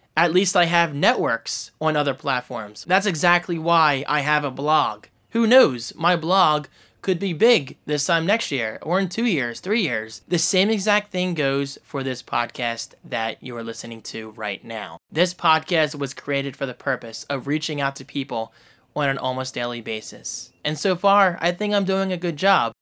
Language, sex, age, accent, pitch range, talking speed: English, male, 20-39, American, 130-175 Hz, 195 wpm